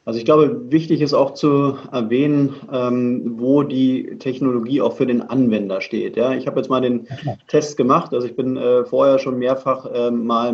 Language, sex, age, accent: German, male, 30-49, German